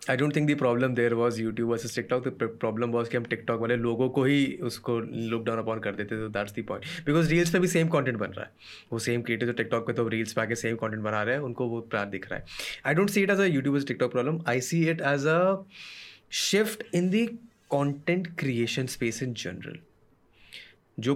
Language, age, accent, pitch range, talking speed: Hindi, 20-39, native, 110-140 Hz, 235 wpm